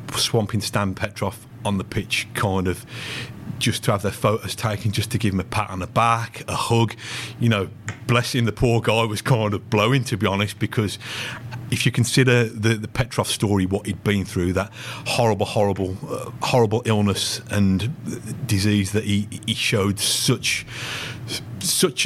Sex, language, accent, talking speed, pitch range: male, English, British, 175 wpm, 100-120 Hz